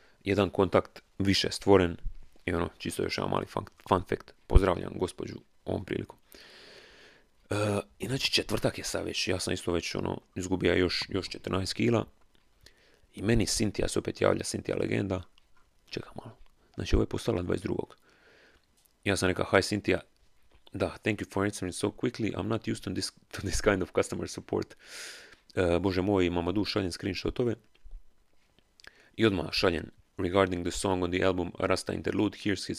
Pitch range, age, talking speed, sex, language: 90-105 Hz, 30-49, 170 wpm, male, Croatian